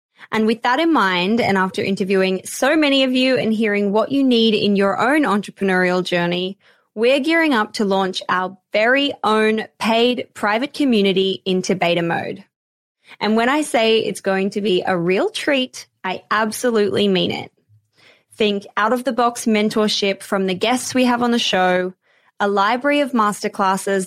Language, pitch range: English, 195-245 Hz